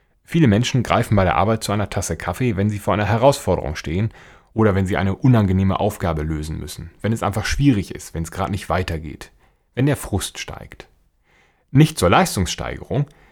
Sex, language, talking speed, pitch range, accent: male, German, 185 wpm, 90-125 Hz, German